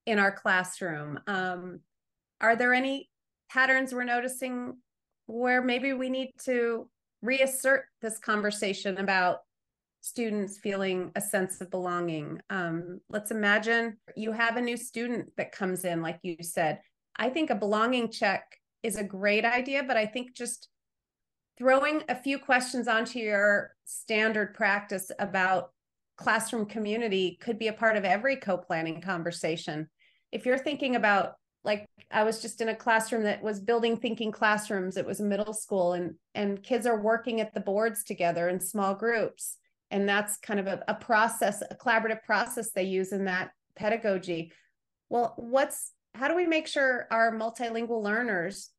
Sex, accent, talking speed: female, American, 160 wpm